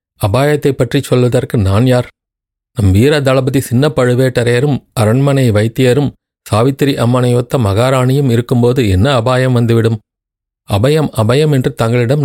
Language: Tamil